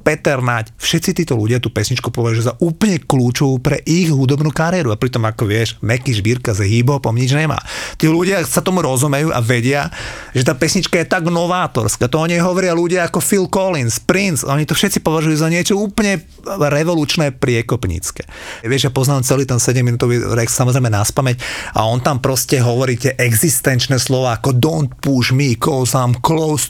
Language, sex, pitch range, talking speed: Slovak, male, 130-160 Hz, 180 wpm